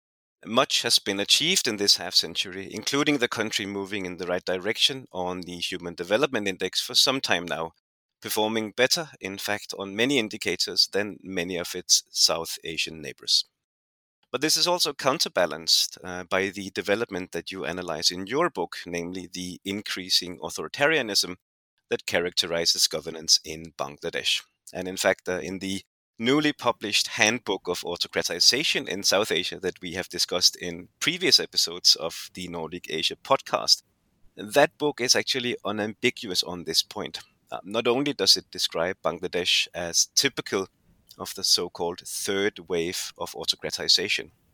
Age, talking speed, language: 30-49, 150 wpm, English